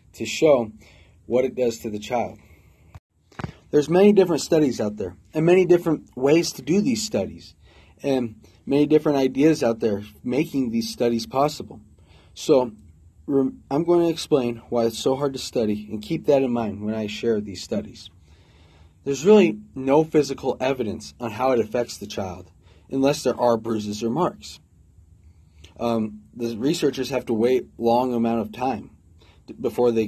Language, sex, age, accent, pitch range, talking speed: English, male, 30-49, American, 90-135 Hz, 165 wpm